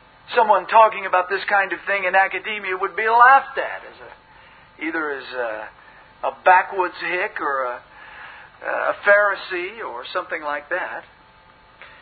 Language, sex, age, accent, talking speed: English, male, 50-69, American, 145 wpm